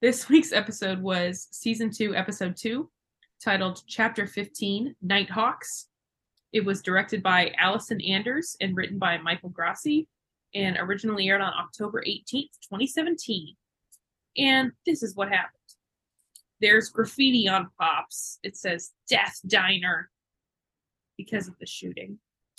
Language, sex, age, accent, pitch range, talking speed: English, female, 20-39, American, 185-235 Hz, 125 wpm